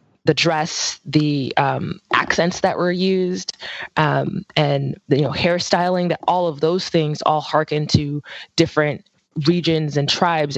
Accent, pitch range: American, 140-160 Hz